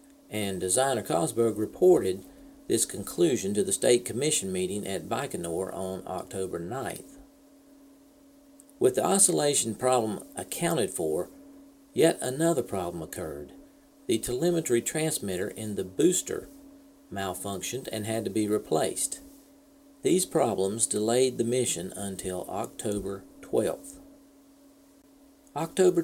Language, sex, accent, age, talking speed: English, male, American, 50-69, 110 wpm